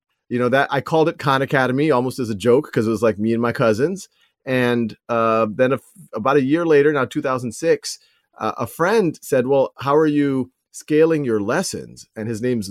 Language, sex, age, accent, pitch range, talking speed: English, male, 30-49, American, 110-135 Hz, 210 wpm